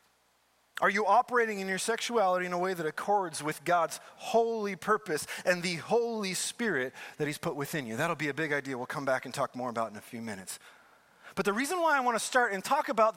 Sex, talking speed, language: male, 235 wpm, English